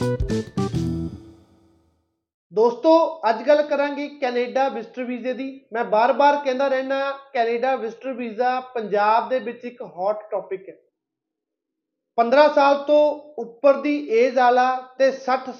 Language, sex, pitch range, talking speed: Punjabi, male, 225-285 Hz, 120 wpm